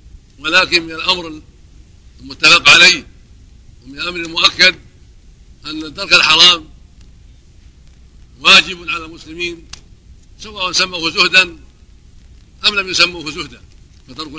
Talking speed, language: 90 wpm, Arabic